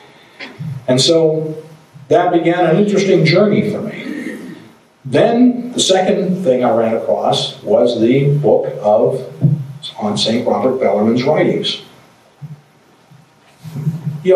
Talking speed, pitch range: 110 wpm, 130-190 Hz